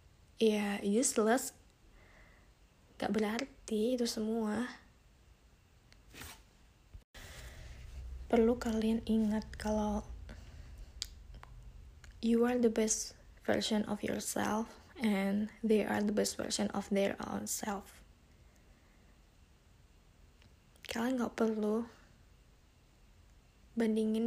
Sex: female